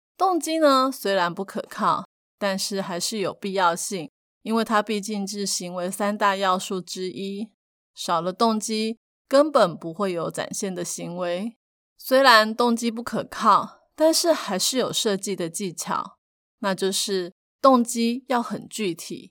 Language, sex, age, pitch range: Chinese, female, 20-39, 190-235 Hz